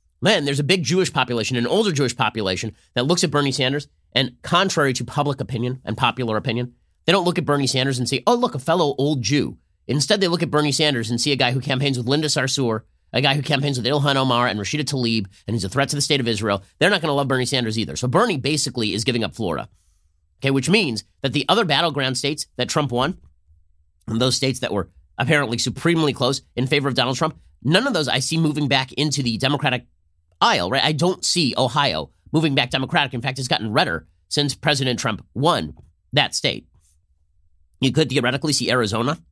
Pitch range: 115-150 Hz